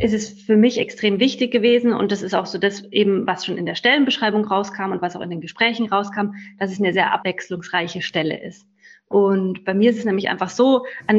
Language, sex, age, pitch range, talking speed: German, female, 30-49, 190-220 Hz, 235 wpm